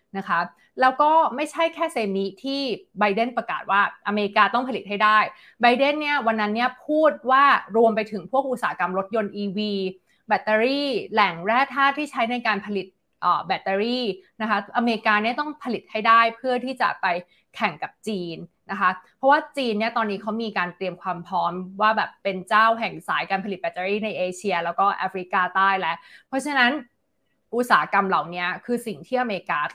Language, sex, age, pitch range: Thai, female, 20-39, 195-245 Hz